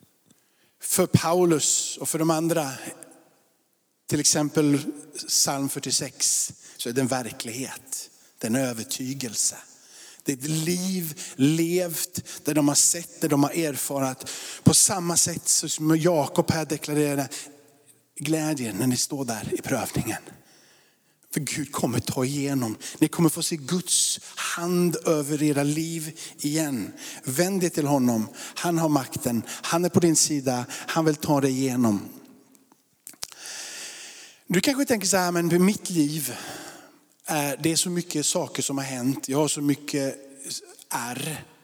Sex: male